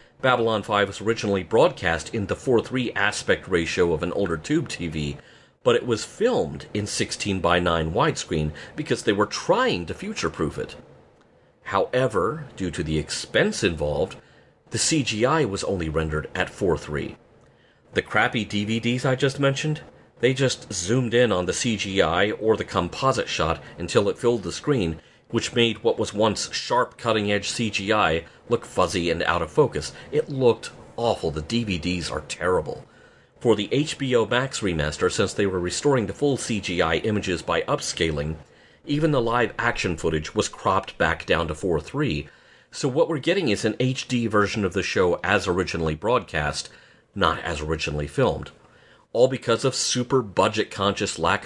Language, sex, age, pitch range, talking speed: English, male, 40-59, 85-125 Hz, 155 wpm